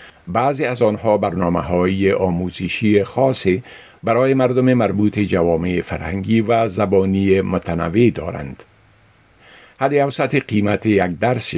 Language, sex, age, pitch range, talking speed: Persian, male, 50-69, 95-120 Hz, 105 wpm